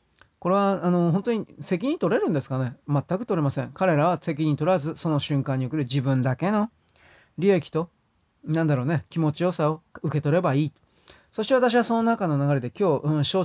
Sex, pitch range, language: male, 140-200 Hz, Japanese